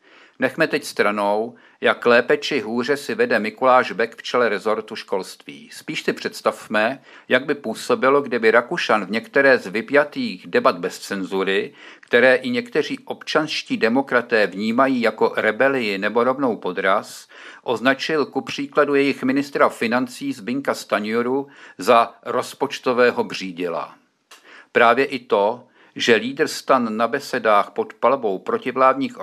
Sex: male